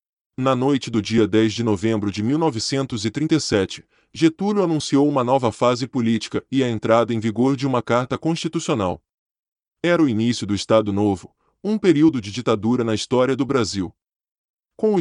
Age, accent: 20-39, Brazilian